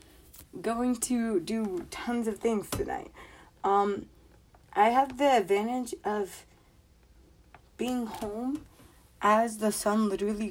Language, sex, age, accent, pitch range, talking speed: English, female, 20-39, American, 190-265 Hz, 110 wpm